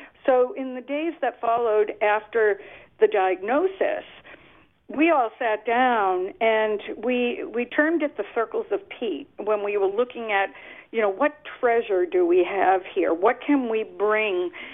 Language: English